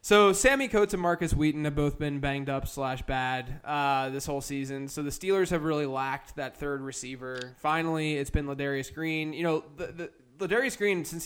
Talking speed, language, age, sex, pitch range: 205 wpm, English, 10-29, male, 135-165 Hz